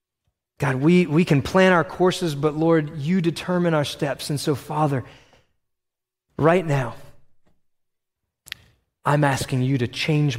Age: 30-49